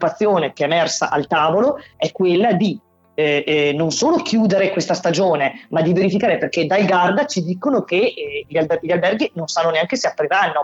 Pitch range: 165-195 Hz